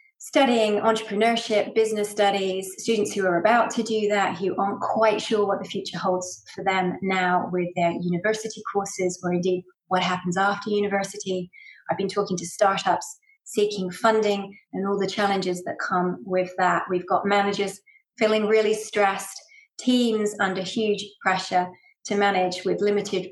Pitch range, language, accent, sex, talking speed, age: 185-215 Hz, English, British, female, 155 wpm, 30-49